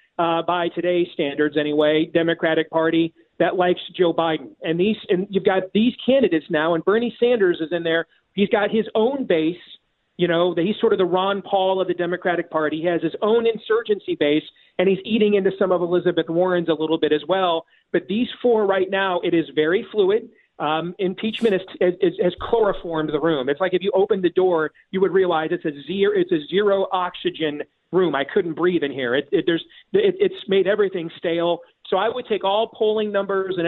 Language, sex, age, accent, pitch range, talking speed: English, male, 40-59, American, 165-200 Hz, 205 wpm